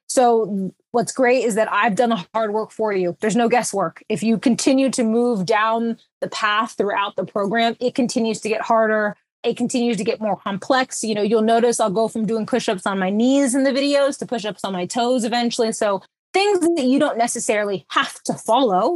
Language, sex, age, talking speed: English, female, 20-39, 210 wpm